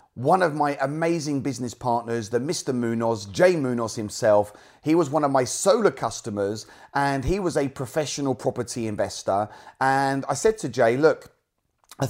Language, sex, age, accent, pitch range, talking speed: English, male, 30-49, British, 125-155 Hz, 165 wpm